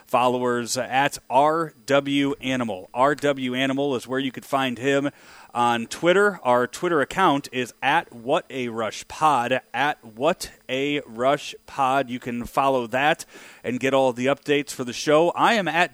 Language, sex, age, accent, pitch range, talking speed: English, male, 30-49, American, 120-140 Hz, 170 wpm